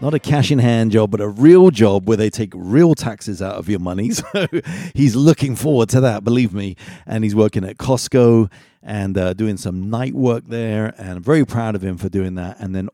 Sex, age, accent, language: male, 40-59, British, English